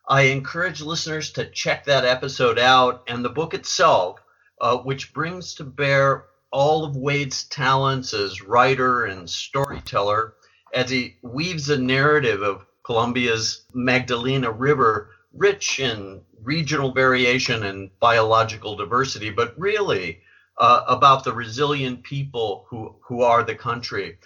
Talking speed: 130 wpm